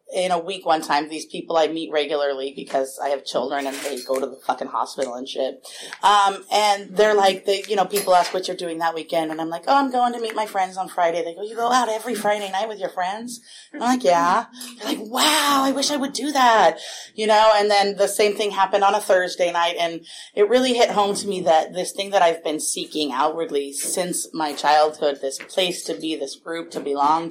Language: English